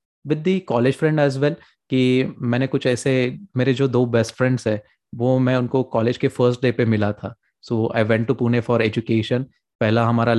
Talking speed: 195 wpm